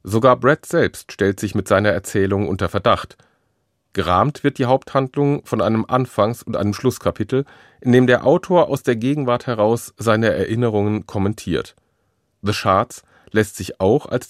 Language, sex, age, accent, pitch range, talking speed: German, male, 40-59, German, 95-120 Hz, 155 wpm